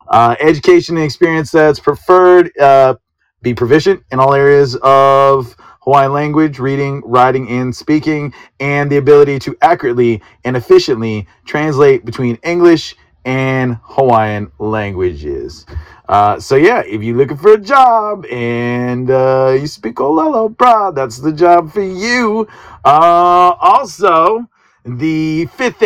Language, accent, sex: English, American, male